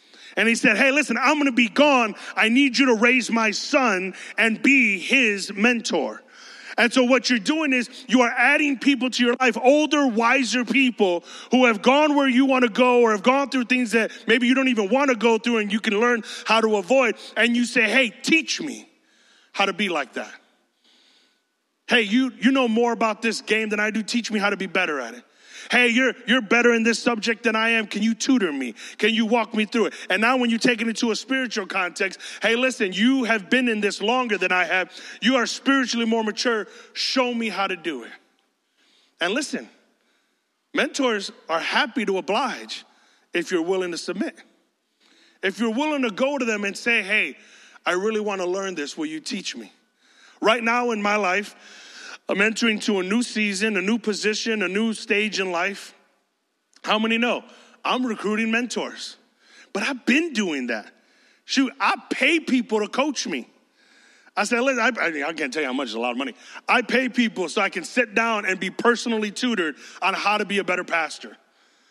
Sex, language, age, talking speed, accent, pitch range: male, English, 30-49, 210 wpm, American, 210-255 Hz